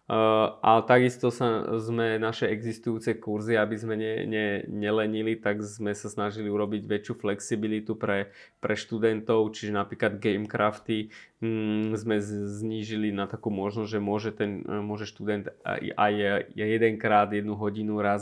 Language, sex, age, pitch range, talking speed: Slovak, male, 20-39, 105-110 Hz, 140 wpm